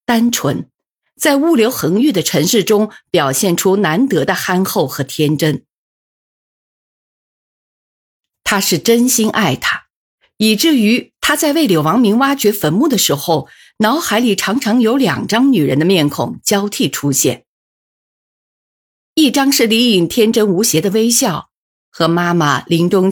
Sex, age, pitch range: female, 50-69, 160-240 Hz